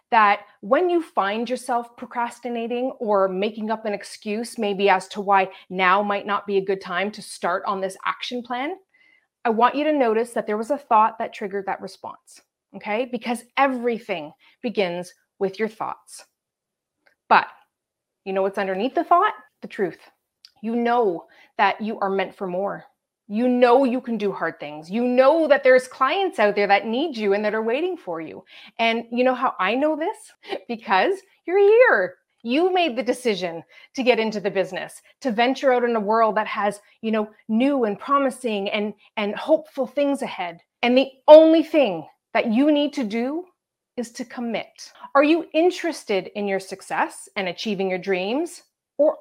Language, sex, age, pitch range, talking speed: English, female, 30-49, 205-280 Hz, 180 wpm